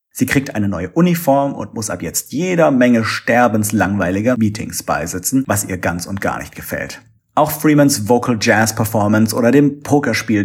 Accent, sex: German, male